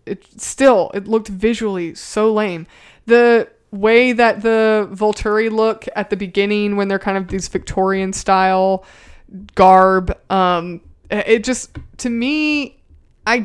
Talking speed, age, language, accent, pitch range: 130 wpm, 20-39, English, American, 185-220 Hz